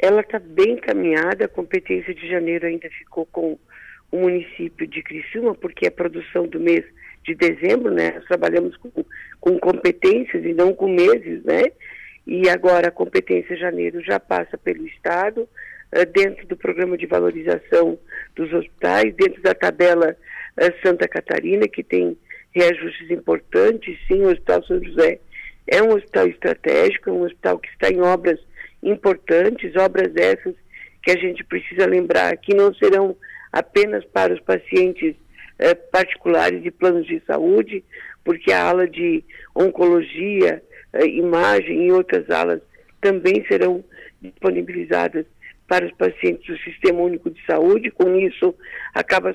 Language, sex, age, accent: Portuguese, female, 50-69, Brazilian